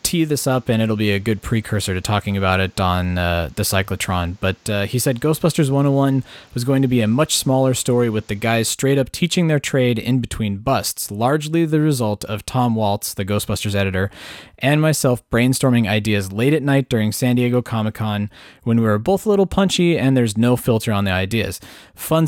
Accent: American